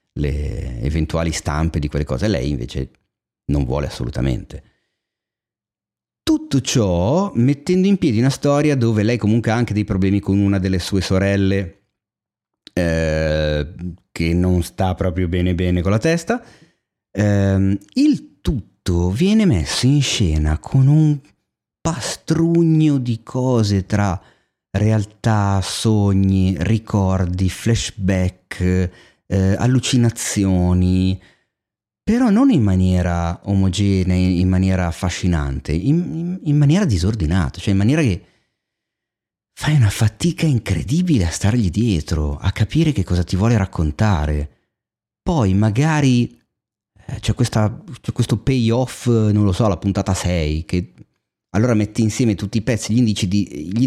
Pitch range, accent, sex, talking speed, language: 90-120 Hz, native, male, 125 wpm, Italian